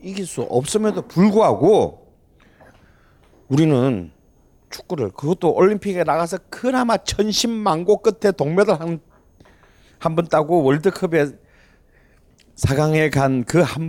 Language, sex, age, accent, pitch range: Korean, male, 40-59, native, 110-170 Hz